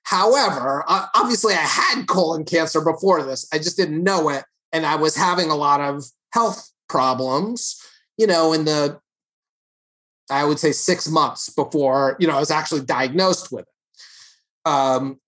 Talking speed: 160 wpm